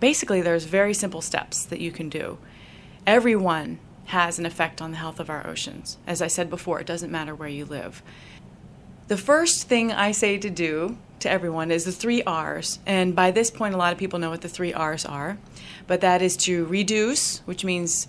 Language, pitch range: English, 170-200 Hz